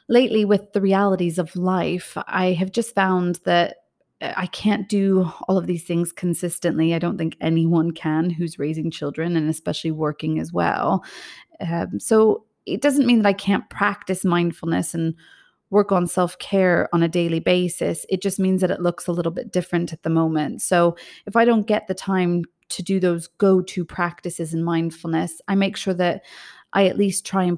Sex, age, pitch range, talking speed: female, 30-49, 170-195 Hz, 185 wpm